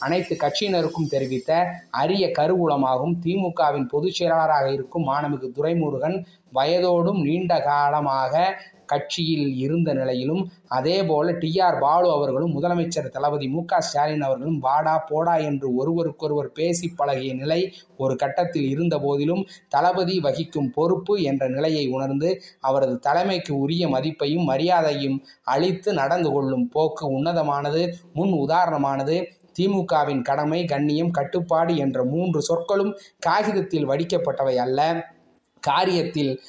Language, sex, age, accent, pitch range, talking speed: Tamil, male, 20-39, native, 140-175 Hz, 105 wpm